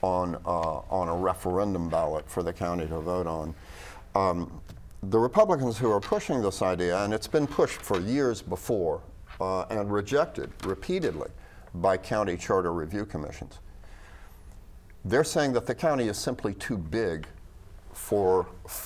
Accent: American